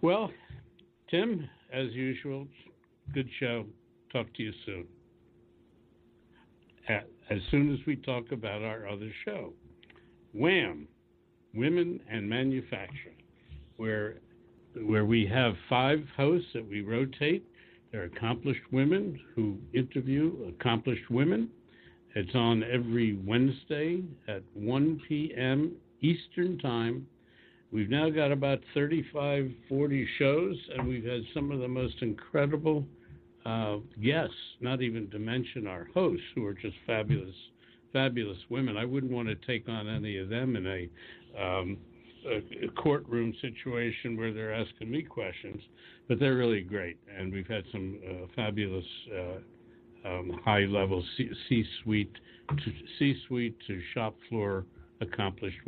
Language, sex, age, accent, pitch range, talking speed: English, male, 60-79, American, 105-135 Hz, 125 wpm